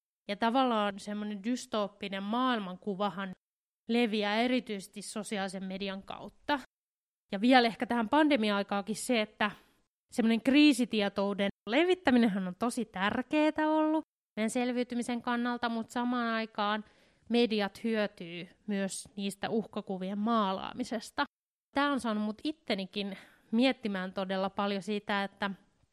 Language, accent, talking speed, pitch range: Finnish, native, 105 wpm, 195-235 Hz